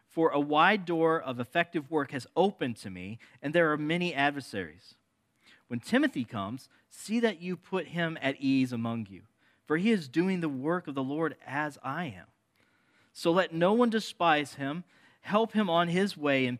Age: 40-59